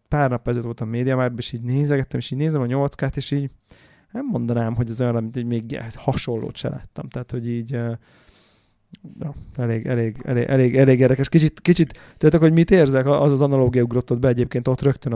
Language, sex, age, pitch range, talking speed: Hungarian, male, 20-39, 120-145 Hz, 200 wpm